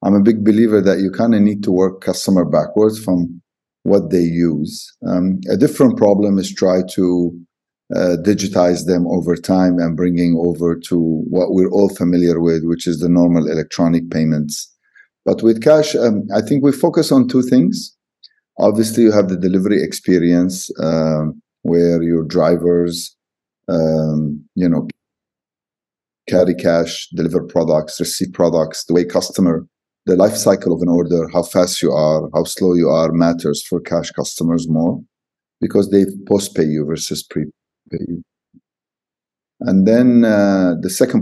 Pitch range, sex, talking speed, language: 85-95 Hz, male, 155 wpm, English